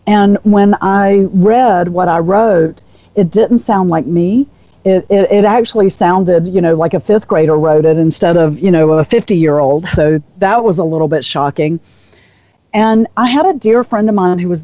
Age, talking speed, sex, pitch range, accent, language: 50-69, 195 wpm, female, 155-205 Hz, American, English